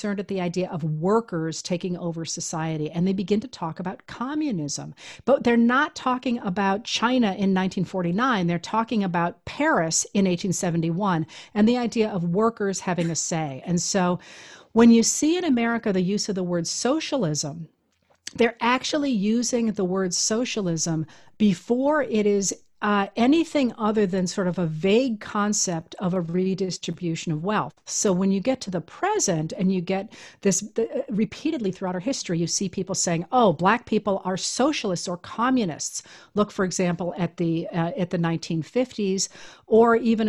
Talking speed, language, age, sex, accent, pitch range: 165 wpm, English, 50-69, female, American, 175-225 Hz